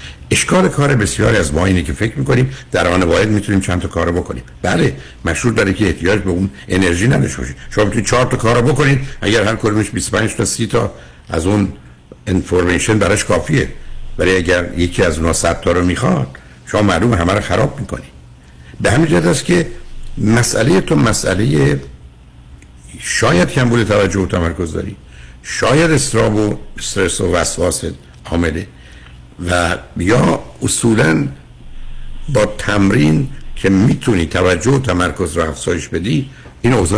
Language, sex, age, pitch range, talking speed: Persian, male, 60-79, 70-105 Hz, 140 wpm